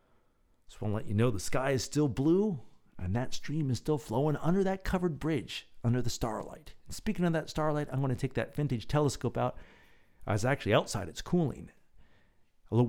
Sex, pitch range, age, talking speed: male, 90-140 Hz, 50-69, 195 wpm